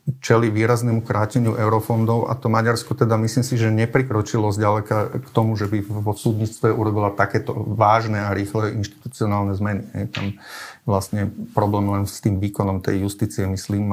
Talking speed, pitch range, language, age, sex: 170 wpm, 100-115 Hz, Slovak, 40-59, male